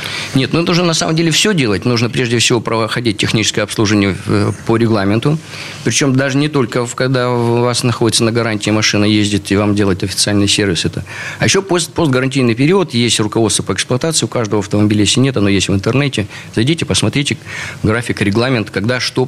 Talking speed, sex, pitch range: 175 wpm, male, 105-140 Hz